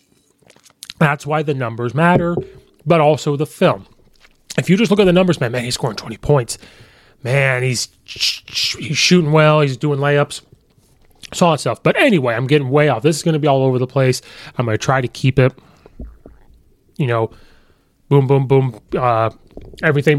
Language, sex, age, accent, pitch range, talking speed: English, male, 30-49, American, 130-180 Hz, 195 wpm